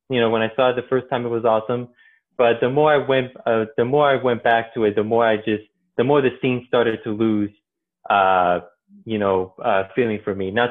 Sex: male